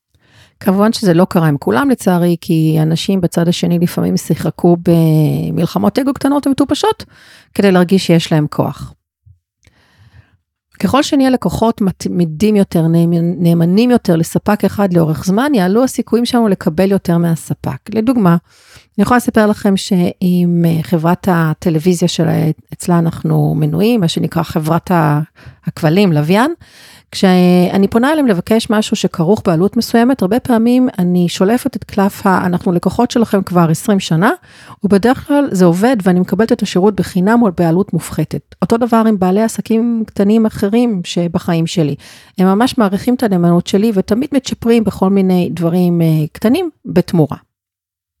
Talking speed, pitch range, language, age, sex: 135 wpm, 165-220 Hz, Hebrew, 40-59, female